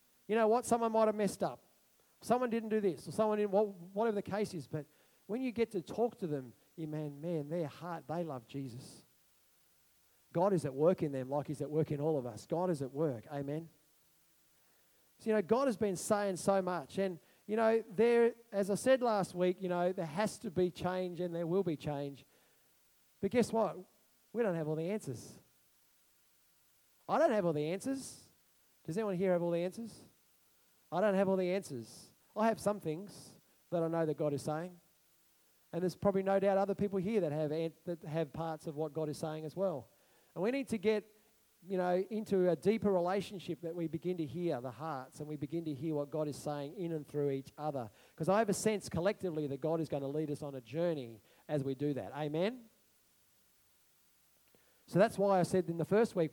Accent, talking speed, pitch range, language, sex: Australian, 220 wpm, 155-200 Hz, English, male